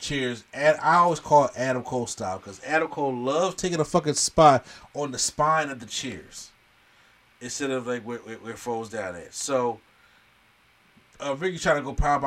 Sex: male